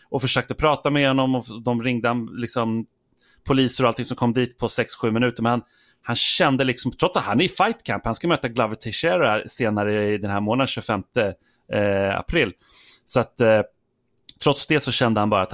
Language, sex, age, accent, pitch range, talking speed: Swedish, male, 30-49, native, 105-130 Hz, 200 wpm